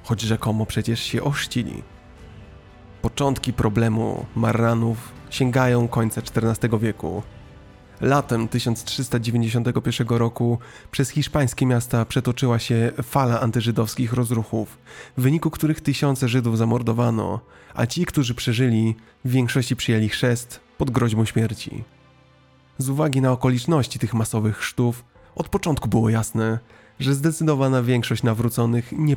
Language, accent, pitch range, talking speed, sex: Polish, native, 110-130 Hz, 115 wpm, male